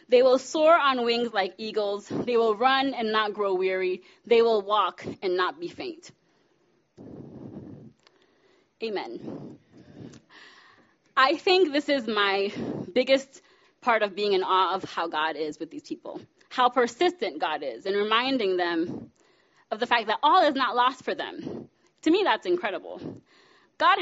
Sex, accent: female, American